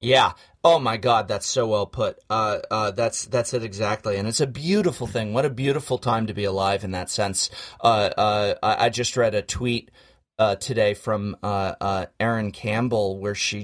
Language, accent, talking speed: English, American, 200 wpm